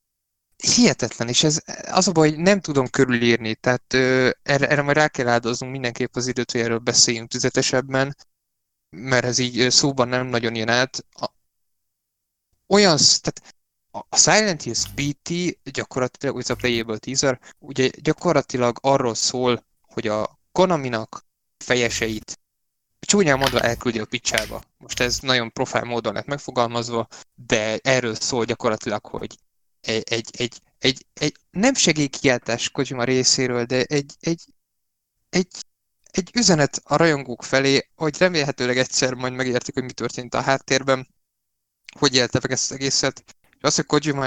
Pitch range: 120-150 Hz